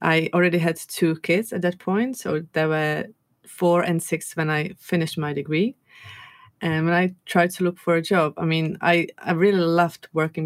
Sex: female